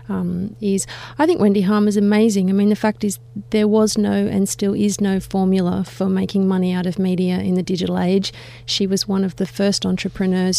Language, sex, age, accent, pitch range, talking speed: English, female, 30-49, Australian, 175-205 Hz, 215 wpm